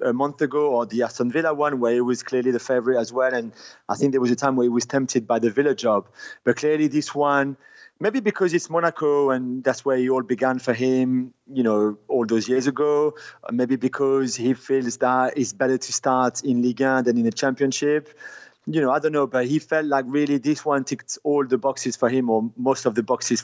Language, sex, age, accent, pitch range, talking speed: English, male, 30-49, French, 125-145 Hz, 240 wpm